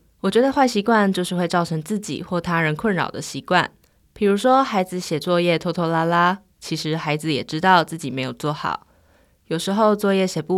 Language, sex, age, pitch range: Chinese, female, 20-39, 160-200 Hz